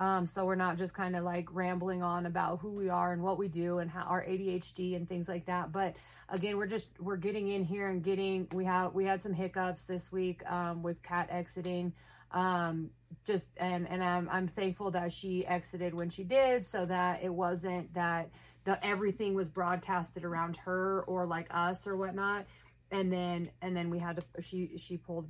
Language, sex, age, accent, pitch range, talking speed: English, female, 30-49, American, 175-195 Hz, 205 wpm